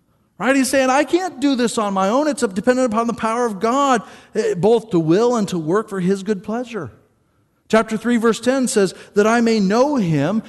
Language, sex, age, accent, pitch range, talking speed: English, male, 40-59, American, 155-225 Hz, 205 wpm